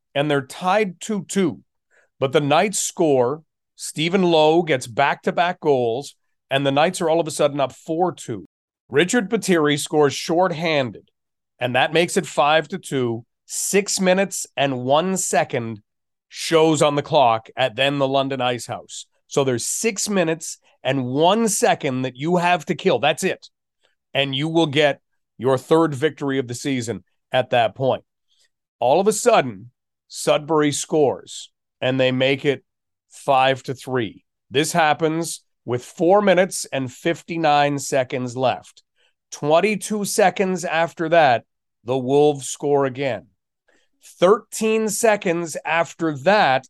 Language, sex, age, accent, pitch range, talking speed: English, male, 40-59, American, 135-185 Hz, 135 wpm